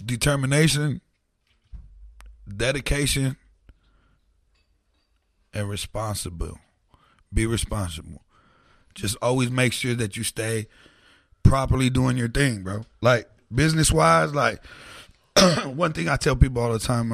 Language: English